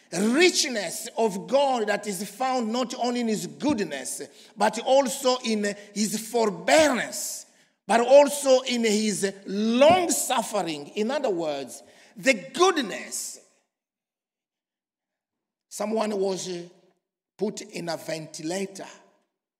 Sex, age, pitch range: male, 50-69, 185-245 Hz